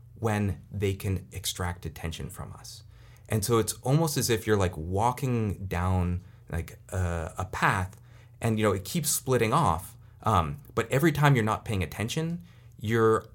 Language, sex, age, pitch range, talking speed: English, male, 30-49, 90-115 Hz, 165 wpm